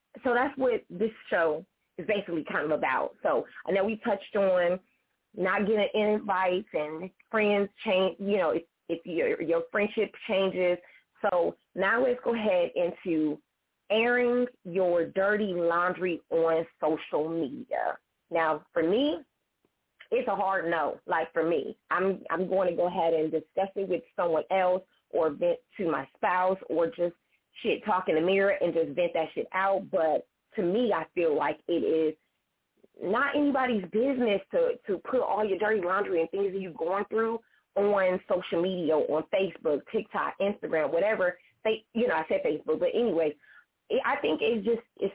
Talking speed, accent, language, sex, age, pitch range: 170 wpm, American, English, female, 30-49, 175-220 Hz